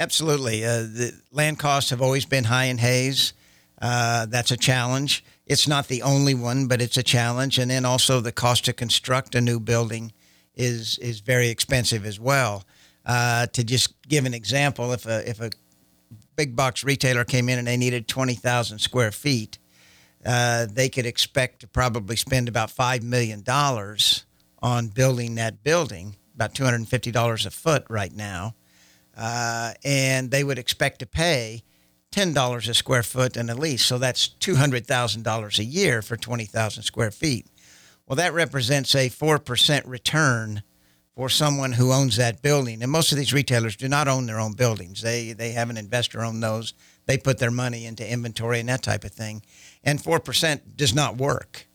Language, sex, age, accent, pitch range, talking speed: English, male, 60-79, American, 115-130 Hz, 180 wpm